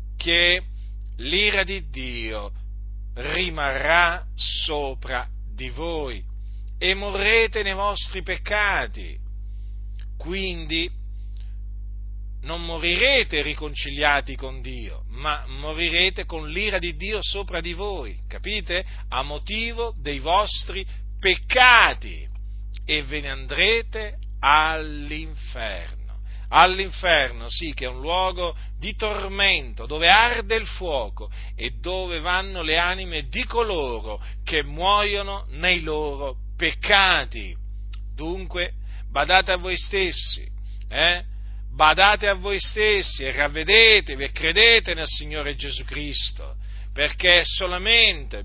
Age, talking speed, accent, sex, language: 40-59, 105 wpm, native, male, Italian